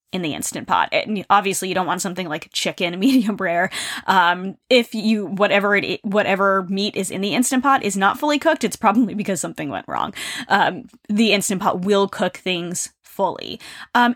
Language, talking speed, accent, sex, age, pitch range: English, 190 wpm, American, female, 10-29, 195-270 Hz